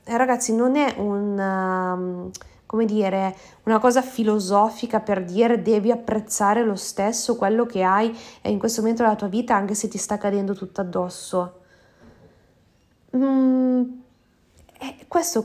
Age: 30-49